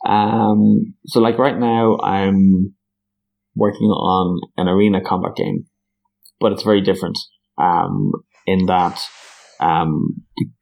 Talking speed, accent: 120 wpm, Irish